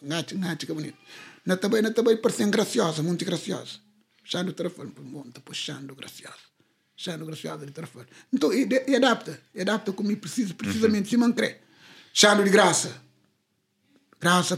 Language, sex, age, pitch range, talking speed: Portuguese, male, 60-79, 160-210 Hz, 175 wpm